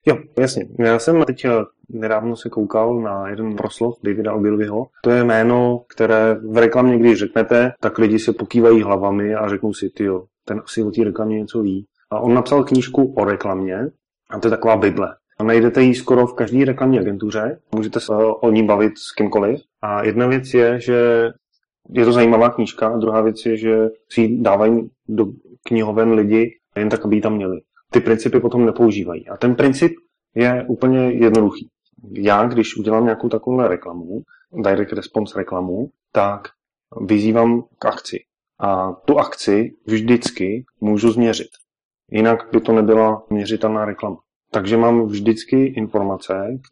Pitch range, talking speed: 105-120 Hz, 165 wpm